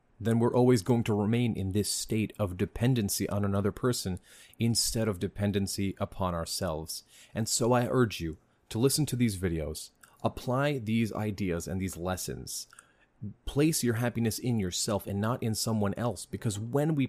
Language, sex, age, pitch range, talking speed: English, male, 30-49, 100-125 Hz, 170 wpm